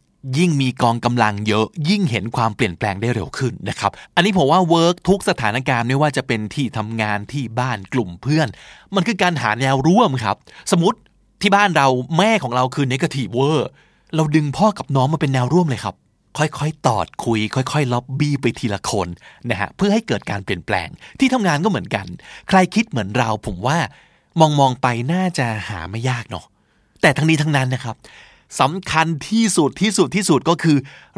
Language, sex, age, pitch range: Thai, male, 20-39, 120-175 Hz